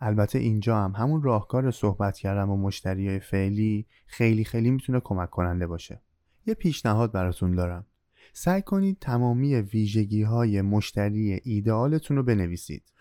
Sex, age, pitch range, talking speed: male, 20-39, 95-130 Hz, 130 wpm